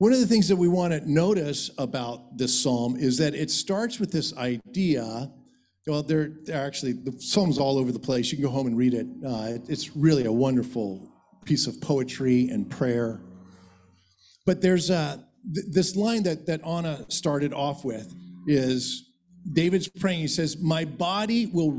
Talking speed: 180 wpm